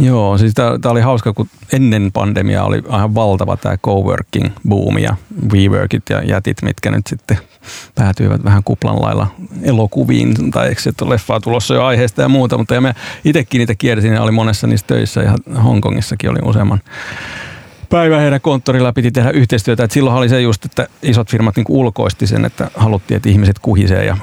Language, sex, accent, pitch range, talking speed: Finnish, male, native, 100-125 Hz, 175 wpm